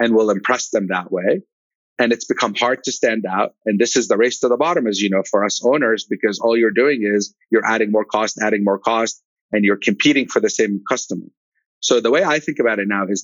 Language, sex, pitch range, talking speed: English, male, 105-120 Hz, 250 wpm